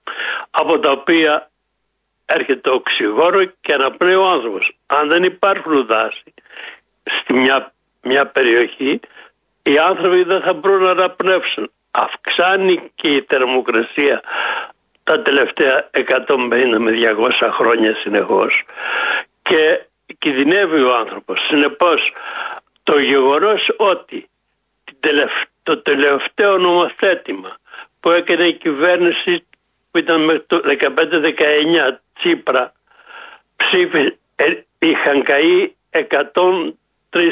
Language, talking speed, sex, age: Greek, 95 wpm, male, 60-79